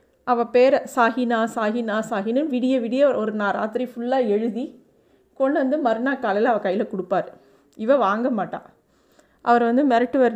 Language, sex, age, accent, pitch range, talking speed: Tamil, female, 30-49, native, 215-255 Hz, 145 wpm